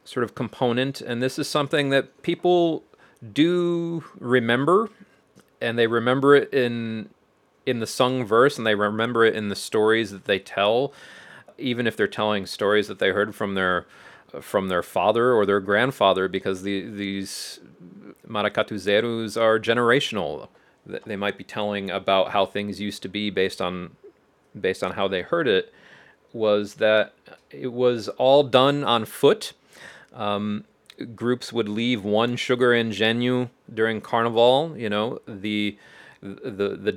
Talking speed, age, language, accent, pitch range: 150 wpm, 30-49, English, American, 100-125 Hz